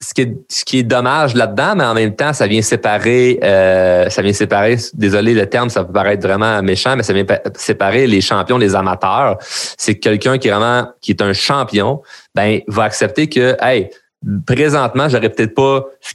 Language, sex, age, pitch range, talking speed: French, male, 30-49, 100-125 Hz, 205 wpm